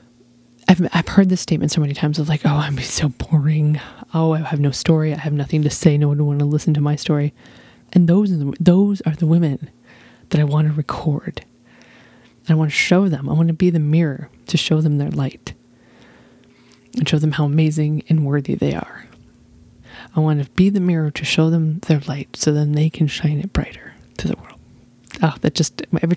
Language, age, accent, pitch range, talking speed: English, 20-39, American, 145-170 Hz, 220 wpm